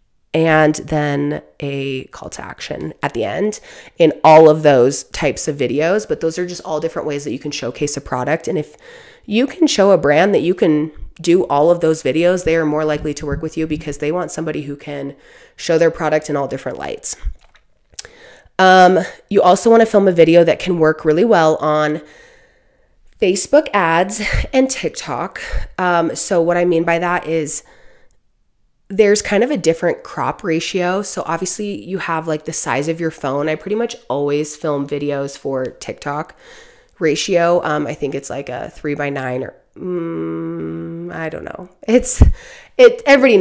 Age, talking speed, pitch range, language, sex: 30-49, 185 wpm, 145-185 Hz, English, female